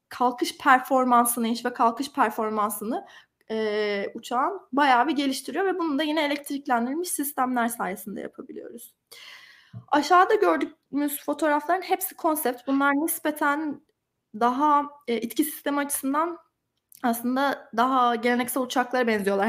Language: Turkish